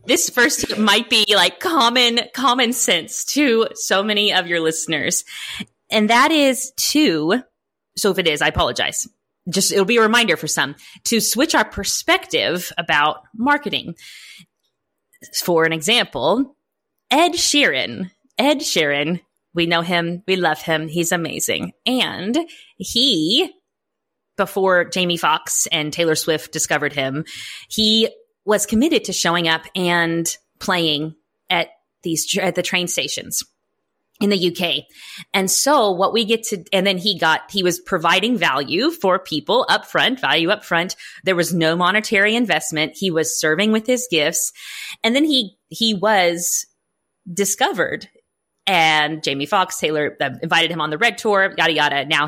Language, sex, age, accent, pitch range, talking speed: English, female, 20-39, American, 160-225 Hz, 150 wpm